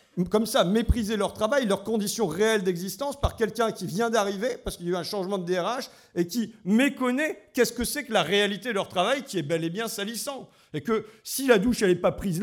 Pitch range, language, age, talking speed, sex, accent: 170-230 Hz, French, 50-69, 240 wpm, male, French